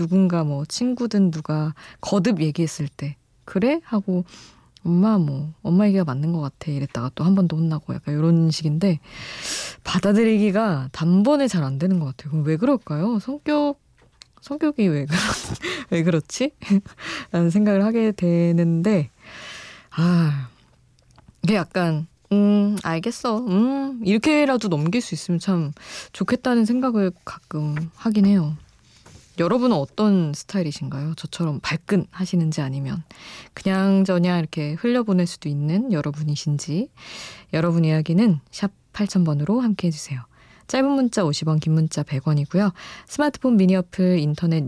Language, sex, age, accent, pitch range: Korean, female, 20-39, native, 150-205 Hz